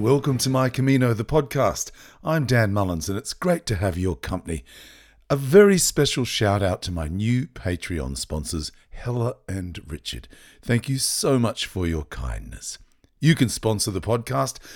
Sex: male